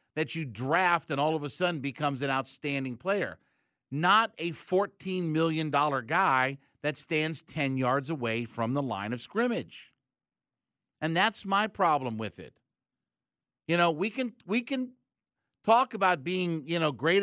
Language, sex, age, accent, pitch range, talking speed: English, male, 50-69, American, 150-195 Hz, 155 wpm